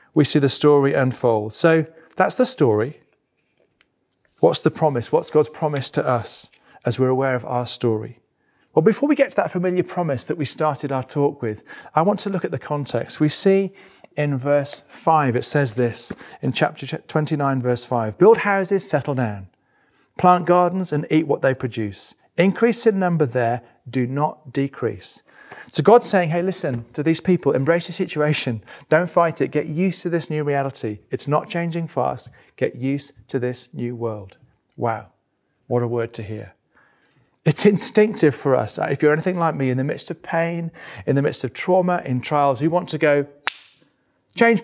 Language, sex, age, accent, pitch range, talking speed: English, male, 40-59, British, 130-170 Hz, 185 wpm